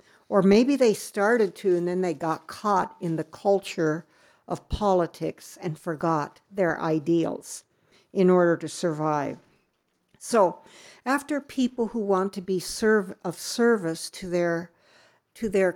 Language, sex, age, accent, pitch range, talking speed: English, female, 60-79, American, 170-220 Hz, 140 wpm